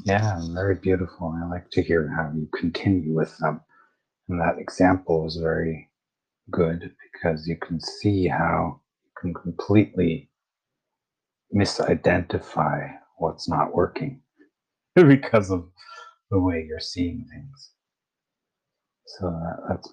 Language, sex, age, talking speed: English, male, 40-59, 115 wpm